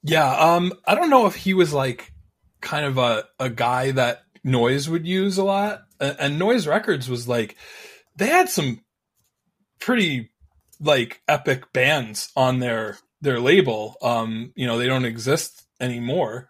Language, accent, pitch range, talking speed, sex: English, American, 115-145 Hz, 160 wpm, male